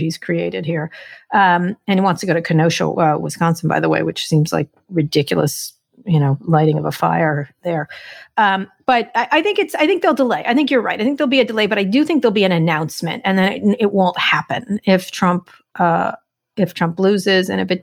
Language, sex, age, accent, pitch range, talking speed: English, female, 40-59, American, 170-215 Hz, 235 wpm